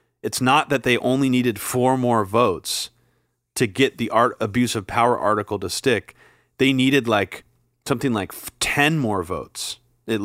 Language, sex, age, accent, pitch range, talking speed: English, male, 30-49, American, 105-125 Hz, 165 wpm